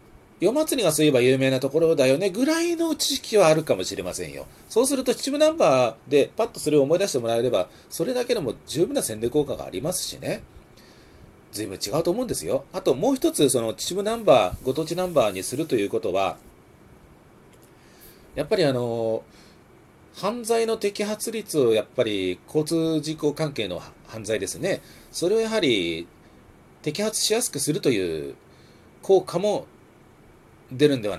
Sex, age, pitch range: male, 40-59, 125-195 Hz